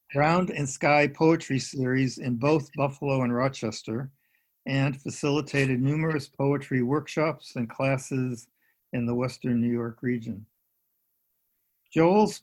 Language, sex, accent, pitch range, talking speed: English, male, American, 120-140 Hz, 115 wpm